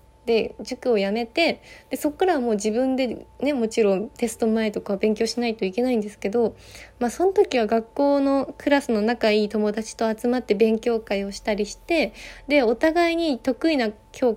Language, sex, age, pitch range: Japanese, female, 20-39, 215-275 Hz